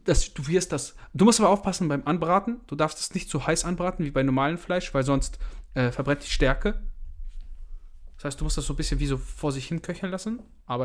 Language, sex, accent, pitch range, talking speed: German, male, German, 125-155 Hz, 245 wpm